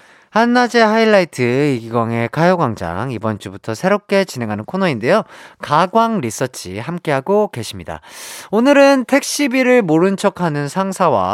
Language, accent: Korean, native